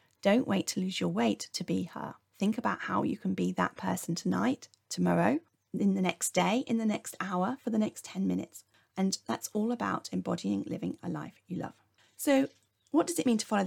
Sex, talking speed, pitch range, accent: female, 215 wpm, 185-225 Hz, British